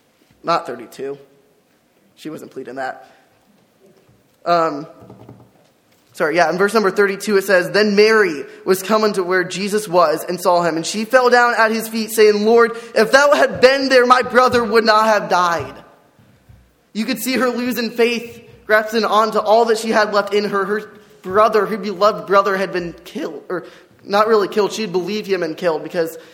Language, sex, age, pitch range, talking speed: English, male, 20-39, 180-215 Hz, 180 wpm